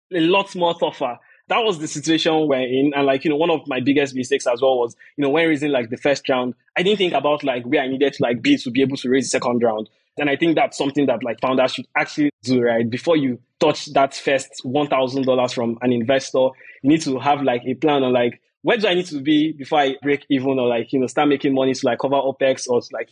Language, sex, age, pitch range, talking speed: English, male, 20-39, 130-155 Hz, 265 wpm